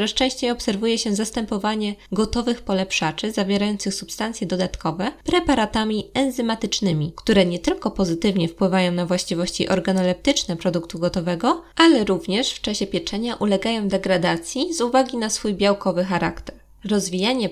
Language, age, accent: Polish, 20-39, native